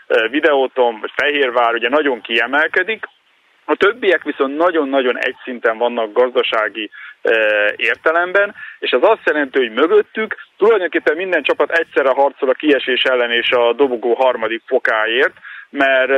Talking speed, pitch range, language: 120 wpm, 125-165 Hz, Hungarian